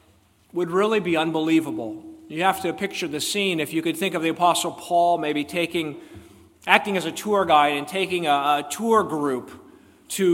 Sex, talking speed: male, 185 wpm